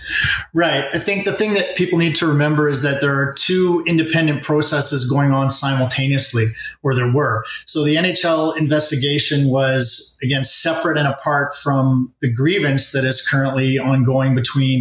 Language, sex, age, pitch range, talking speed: English, male, 30-49, 130-155 Hz, 160 wpm